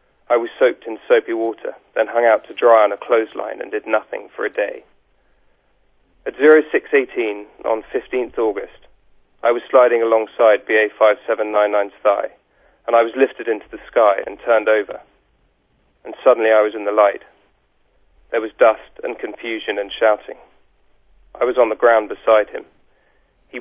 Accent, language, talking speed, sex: British, English, 160 wpm, male